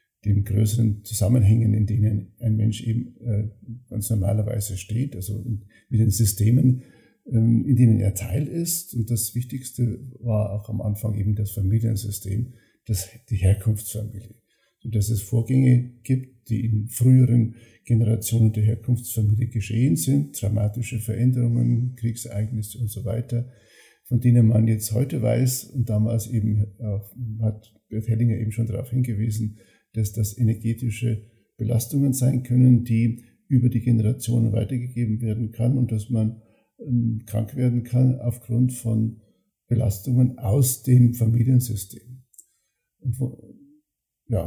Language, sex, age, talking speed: German, male, 50-69, 130 wpm